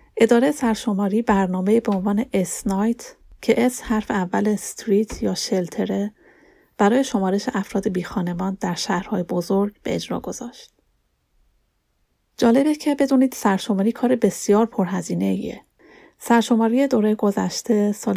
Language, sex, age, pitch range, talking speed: Persian, female, 30-49, 195-235 Hz, 115 wpm